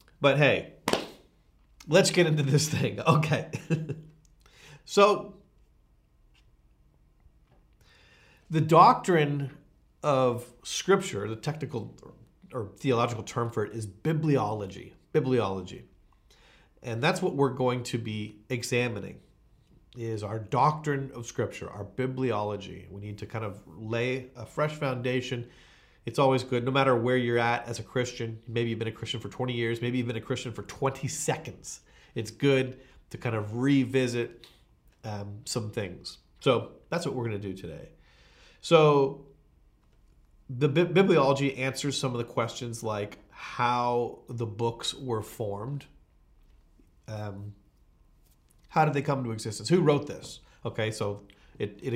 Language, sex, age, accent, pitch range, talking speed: Swedish, male, 40-59, American, 110-140 Hz, 135 wpm